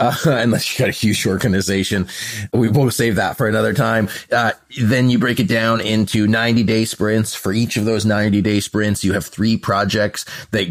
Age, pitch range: 30-49, 95-115 Hz